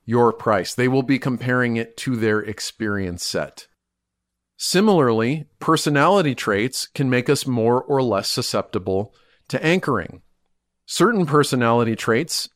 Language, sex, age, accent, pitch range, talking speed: English, male, 40-59, American, 105-135 Hz, 125 wpm